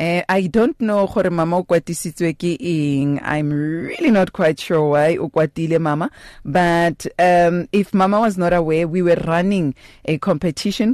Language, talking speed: English, 120 wpm